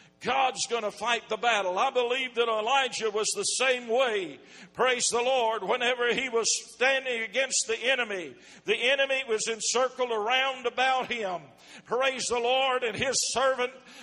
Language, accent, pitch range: English, American, 240-275 Hz